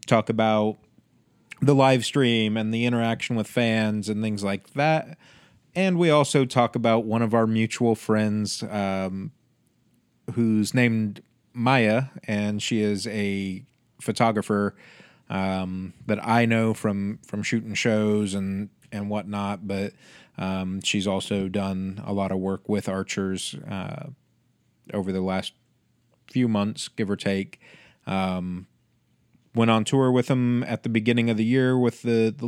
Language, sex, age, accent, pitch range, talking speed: English, male, 30-49, American, 105-120 Hz, 145 wpm